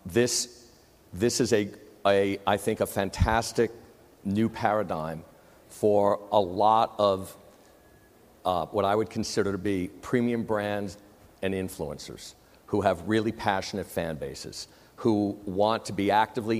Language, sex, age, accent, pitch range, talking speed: English, male, 50-69, American, 100-120 Hz, 135 wpm